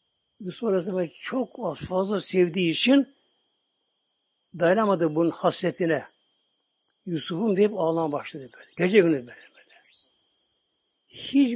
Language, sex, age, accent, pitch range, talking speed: Turkish, male, 60-79, native, 160-215 Hz, 100 wpm